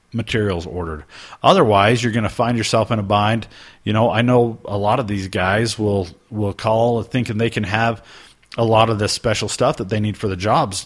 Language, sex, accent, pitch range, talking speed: English, male, American, 100-120 Hz, 215 wpm